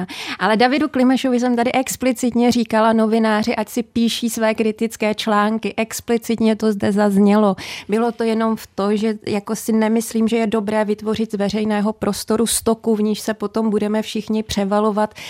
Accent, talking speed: native, 165 wpm